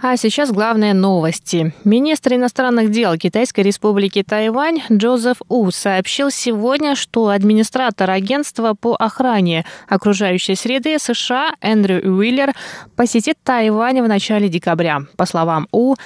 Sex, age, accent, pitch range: female, 20-39, native, 185-245 Hz